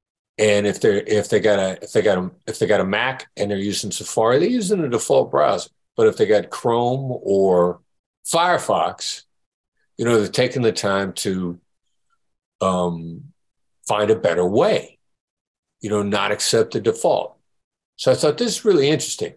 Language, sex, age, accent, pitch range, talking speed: English, male, 60-79, American, 100-170 Hz, 175 wpm